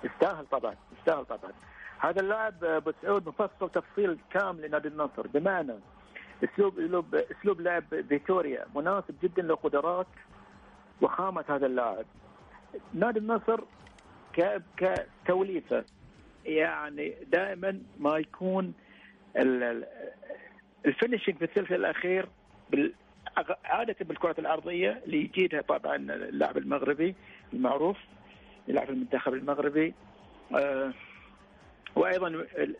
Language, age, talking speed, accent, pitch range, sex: English, 50-69, 90 wpm, Lebanese, 150-205 Hz, male